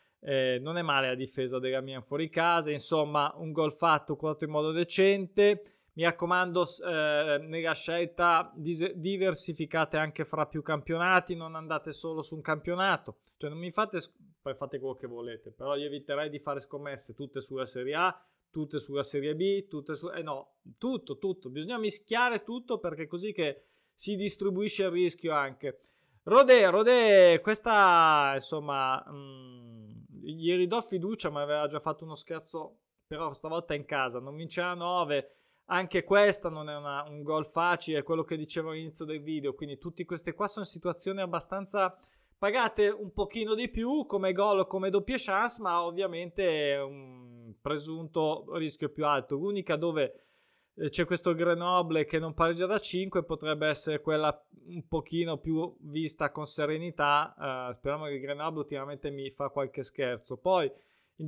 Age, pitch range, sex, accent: 20-39, 150-190 Hz, male, native